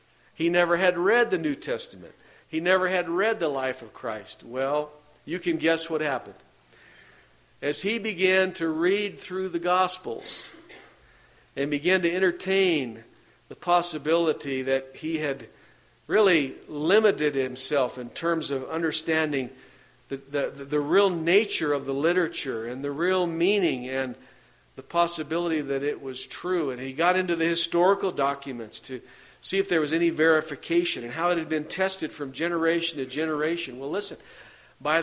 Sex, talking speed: male, 155 wpm